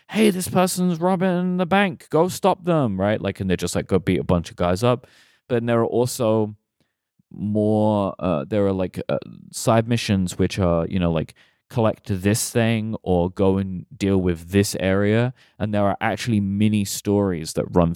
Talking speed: 190 wpm